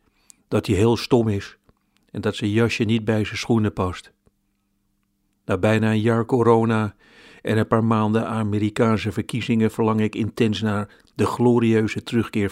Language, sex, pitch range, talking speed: Dutch, male, 100-110 Hz, 155 wpm